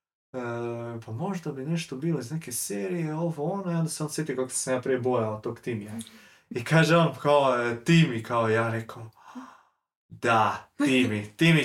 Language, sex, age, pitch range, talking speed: Croatian, male, 20-39, 120-155 Hz, 180 wpm